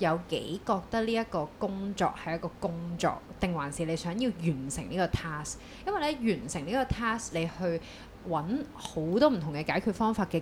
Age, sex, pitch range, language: 20-39, female, 160-215 Hz, Chinese